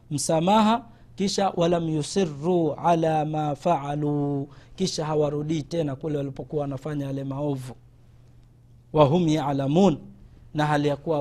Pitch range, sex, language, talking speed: 155-205 Hz, male, Swahili, 100 wpm